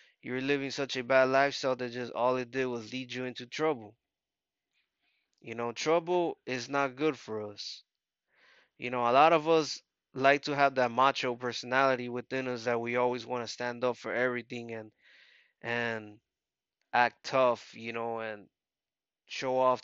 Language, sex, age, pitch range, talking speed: English, male, 20-39, 120-135 Hz, 170 wpm